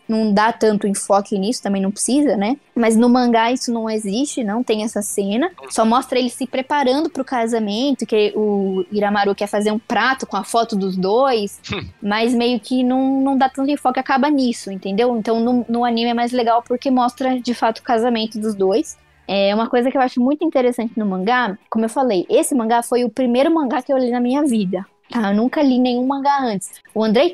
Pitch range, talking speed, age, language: 215-265 Hz, 215 wpm, 10-29, Portuguese